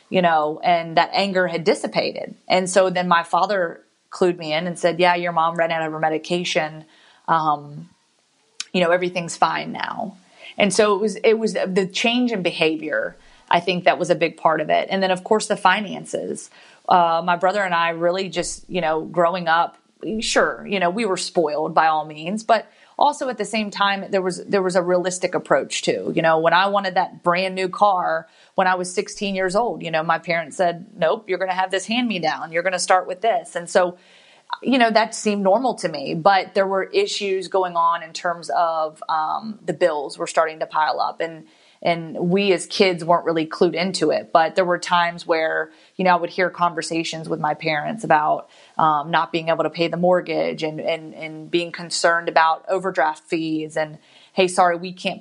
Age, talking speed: 30-49, 210 wpm